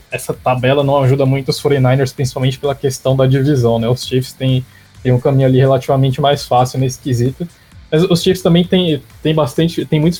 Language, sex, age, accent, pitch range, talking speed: English, male, 20-39, Brazilian, 125-145 Hz, 195 wpm